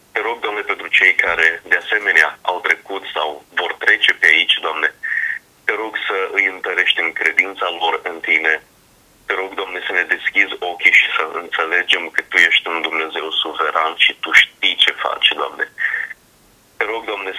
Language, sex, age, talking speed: Romanian, male, 30-49, 175 wpm